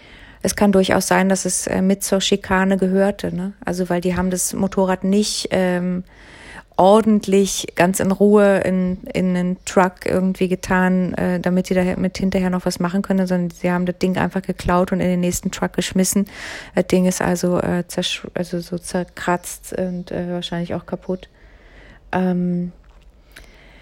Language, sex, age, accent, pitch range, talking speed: German, female, 30-49, German, 180-205 Hz, 170 wpm